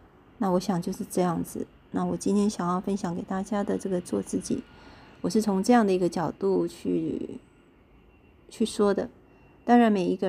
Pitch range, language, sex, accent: 175-215 Hz, Chinese, female, native